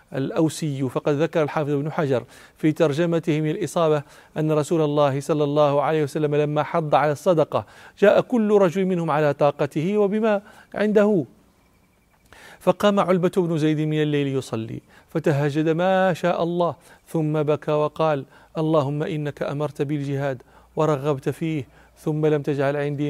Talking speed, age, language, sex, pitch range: 140 wpm, 40-59, Arabic, male, 145-165 Hz